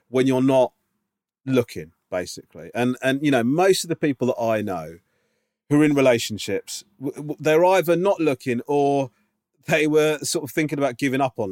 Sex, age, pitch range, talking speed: male, 40-59, 105-145 Hz, 175 wpm